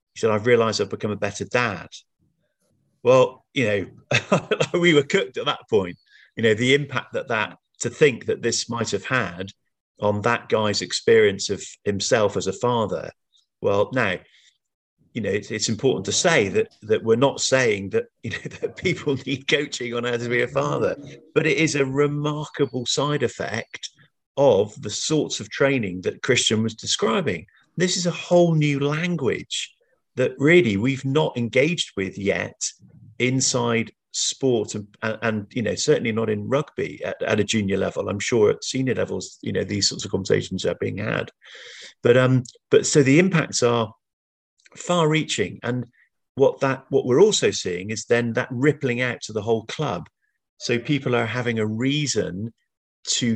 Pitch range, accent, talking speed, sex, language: 110-150 Hz, British, 175 wpm, male, English